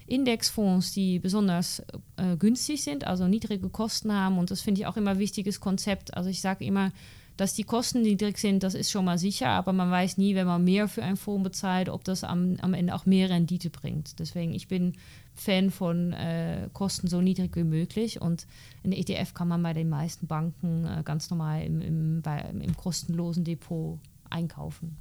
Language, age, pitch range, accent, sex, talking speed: German, 30-49, 170-195 Hz, German, female, 195 wpm